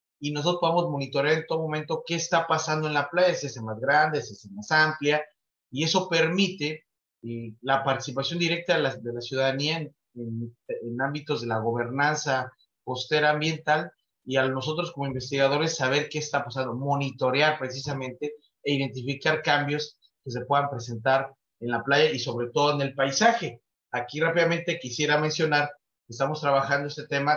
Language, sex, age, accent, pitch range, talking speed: Spanish, male, 30-49, Mexican, 130-155 Hz, 170 wpm